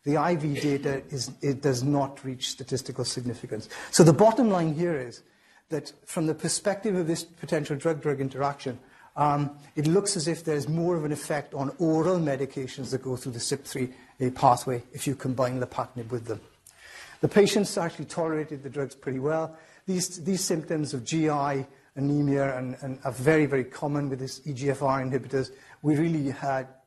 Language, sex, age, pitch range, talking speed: English, male, 50-69, 135-165 Hz, 170 wpm